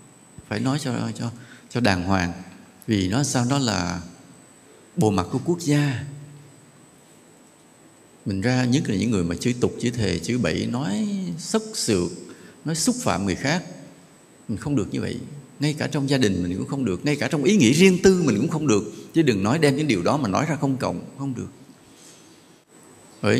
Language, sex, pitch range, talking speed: English, male, 105-155 Hz, 200 wpm